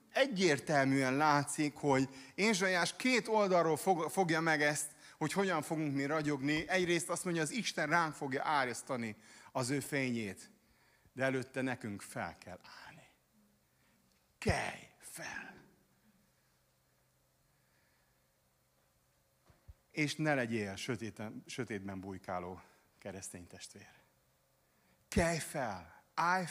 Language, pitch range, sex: Hungarian, 110-150 Hz, male